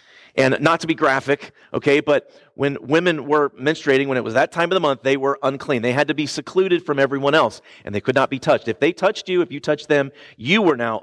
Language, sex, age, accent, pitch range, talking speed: English, male, 40-59, American, 115-150 Hz, 255 wpm